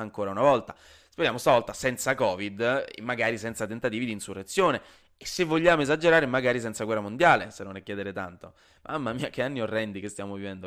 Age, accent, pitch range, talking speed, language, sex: 20-39, native, 110-150 Hz, 185 wpm, Italian, male